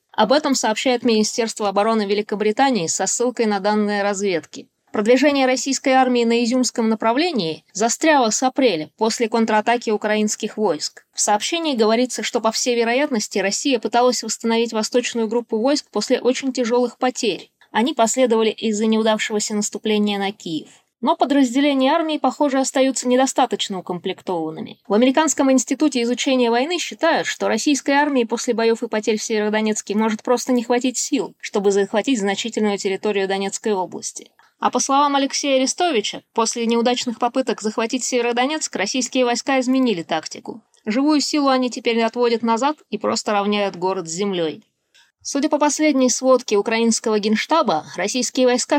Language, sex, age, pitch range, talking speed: Russian, female, 20-39, 215-260 Hz, 140 wpm